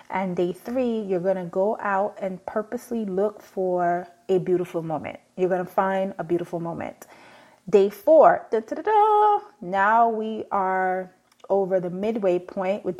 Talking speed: 150 wpm